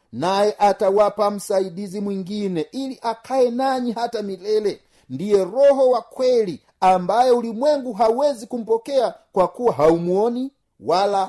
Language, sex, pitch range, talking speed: Swahili, male, 180-230 Hz, 110 wpm